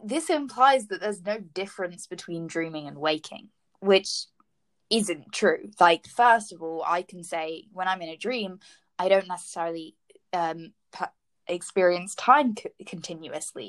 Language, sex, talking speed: English, female, 140 wpm